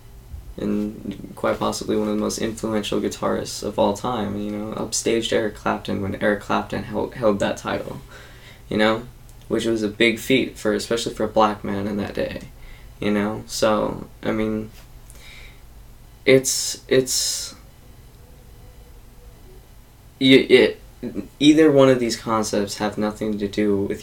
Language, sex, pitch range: English, male, 105-120 Hz